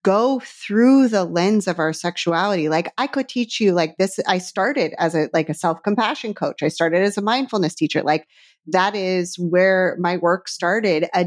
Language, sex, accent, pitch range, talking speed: English, female, American, 175-215 Hz, 190 wpm